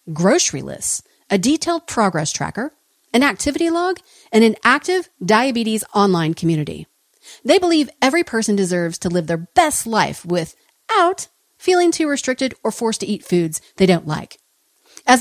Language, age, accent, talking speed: English, 40-59, American, 150 wpm